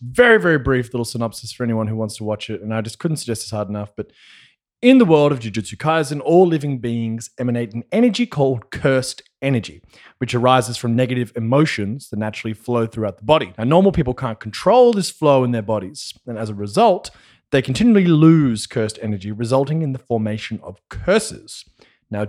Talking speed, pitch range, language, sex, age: 195 wpm, 110-150 Hz, English, male, 20-39